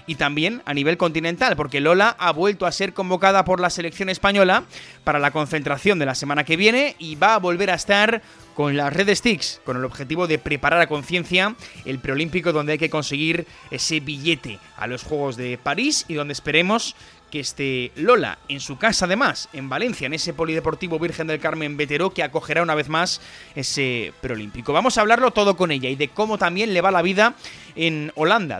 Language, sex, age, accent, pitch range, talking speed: Spanish, male, 30-49, Spanish, 145-195 Hz, 200 wpm